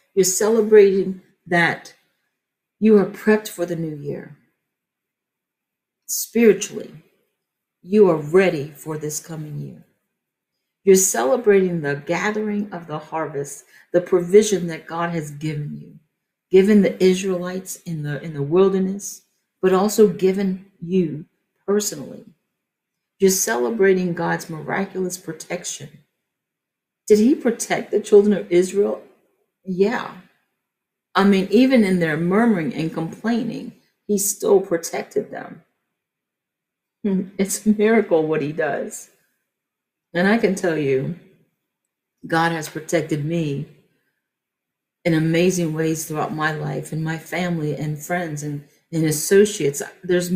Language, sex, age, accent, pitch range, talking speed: English, female, 50-69, American, 160-200 Hz, 120 wpm